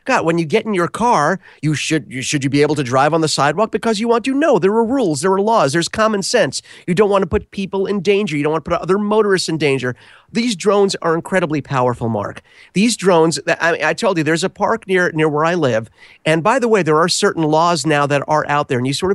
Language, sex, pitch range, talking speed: English, male, 150-200 Hz, 275 wpm